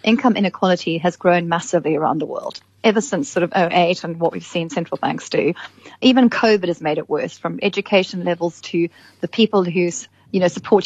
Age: 30-49